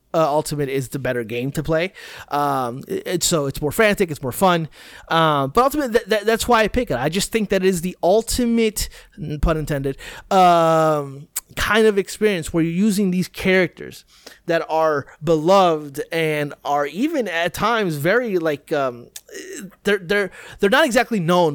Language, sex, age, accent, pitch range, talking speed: English, male, 30-49, American, 145-205 Hz, 175 wpm